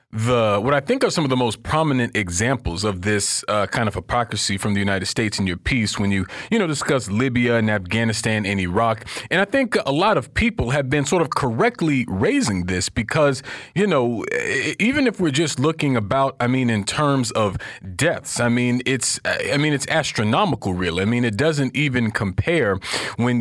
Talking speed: 200 wpm